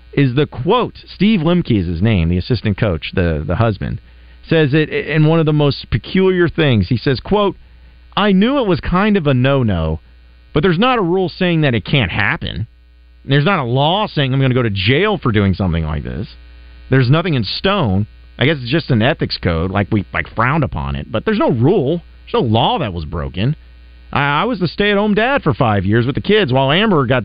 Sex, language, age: male, English, 40-59